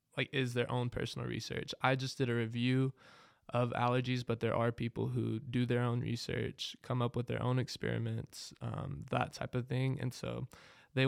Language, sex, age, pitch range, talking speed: English, male, 20-39, 120-130 Hz, 195 wpm